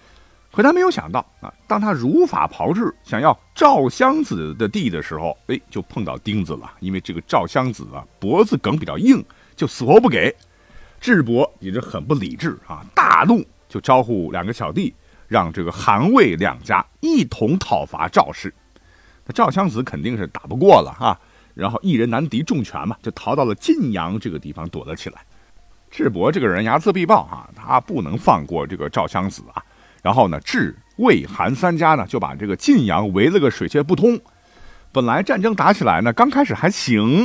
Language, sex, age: Chinese, male, 50-69